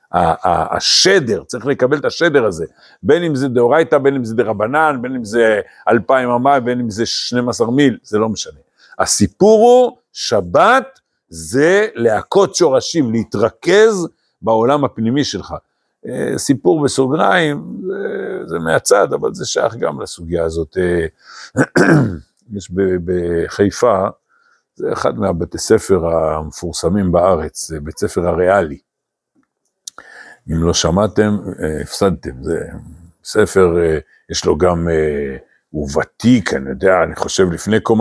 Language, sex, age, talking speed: Hebrew, male, 60-79, 125 wpm